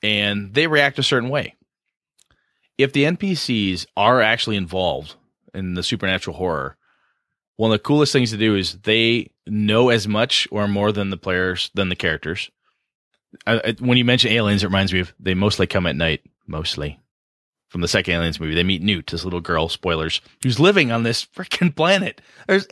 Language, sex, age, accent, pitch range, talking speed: English, male, 30-49, American, 95-135 Hz, 190 wpm